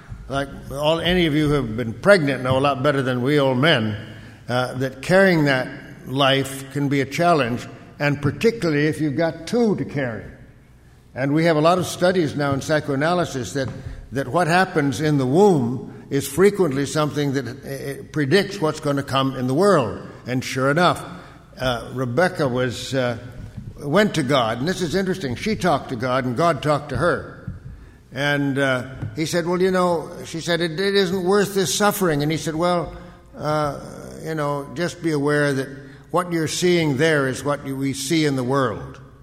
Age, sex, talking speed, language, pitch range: 60-79, male, 190 wpm, English, 130-160 Hz